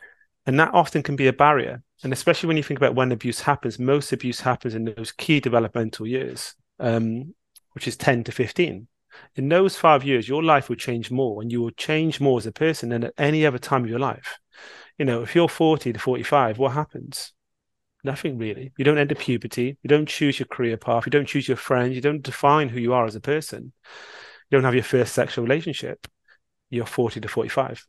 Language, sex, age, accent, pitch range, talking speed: English, male, 30-49, British, 120-145 Hz, 215 wpm